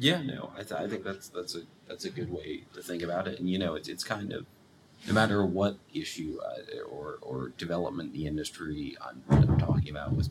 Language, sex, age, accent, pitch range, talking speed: English, male, 30-49, American, 85-95 Hz, 235 wpm